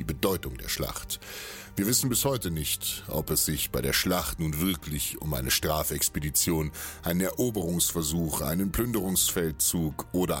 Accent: German